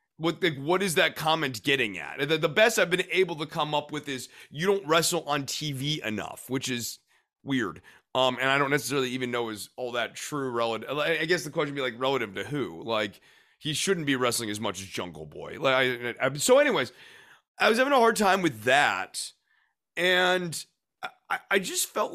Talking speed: 215 wpm